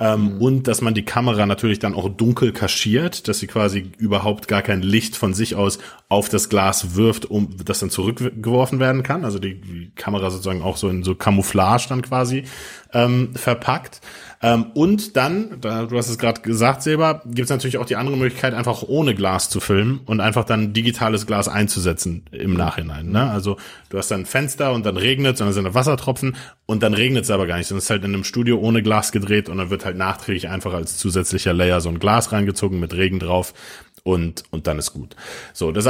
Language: German